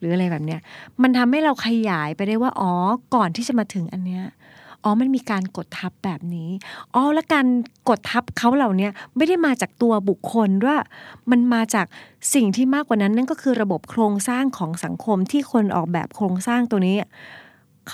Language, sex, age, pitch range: Thai, female, 30-49, 180-235 Hz